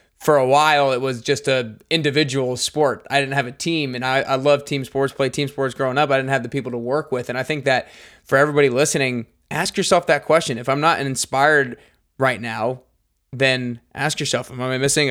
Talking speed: 225 wpm